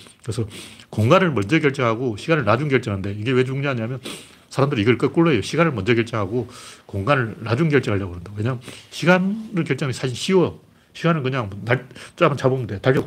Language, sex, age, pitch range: Korean, male, 40-59, 110-140 Hz